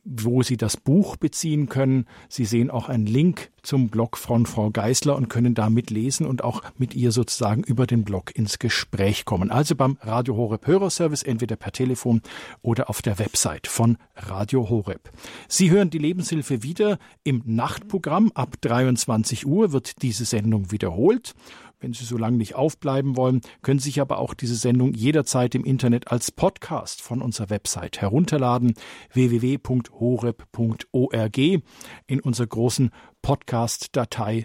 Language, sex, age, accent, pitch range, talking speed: German, male, 50-69, German, 115-140 Hz, 155 wpm